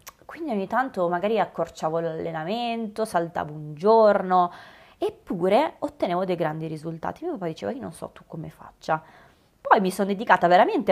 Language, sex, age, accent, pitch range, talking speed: Italian, female, 20-39, native, 160-205 Hz, 155 wpm